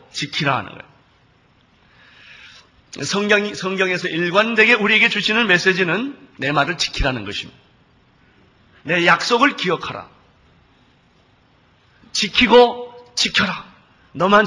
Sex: male